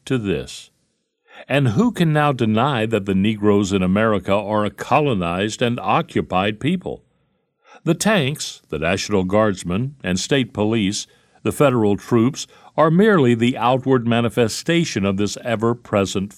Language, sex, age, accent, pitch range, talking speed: English, male, 60-79, American, 100-145 Hz, 135 wpm